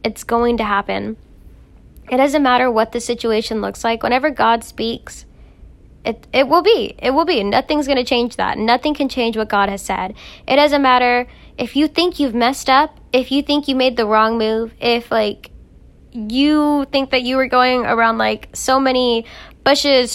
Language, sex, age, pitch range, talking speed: English, female, 10-29, 225-270 Hz, 190 wpm